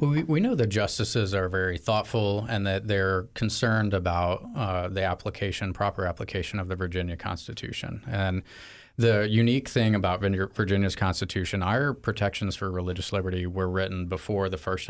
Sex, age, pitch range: male, 30-49, 95-110 Hz